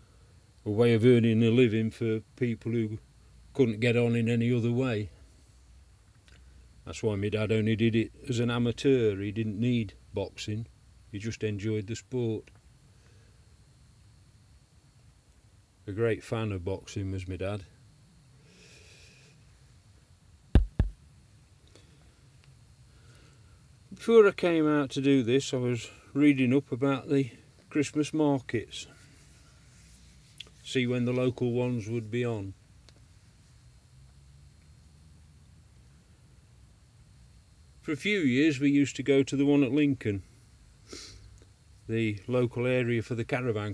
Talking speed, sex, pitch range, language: 115 wpm, male, 105-125 Hz, English